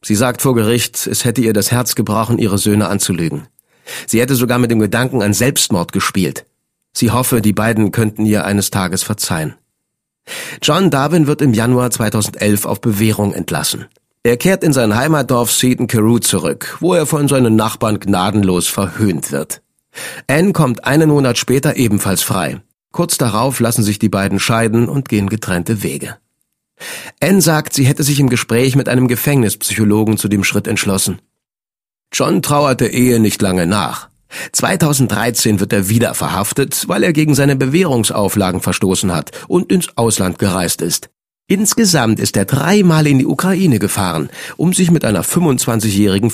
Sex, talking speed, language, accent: male, 160 wpm, German, German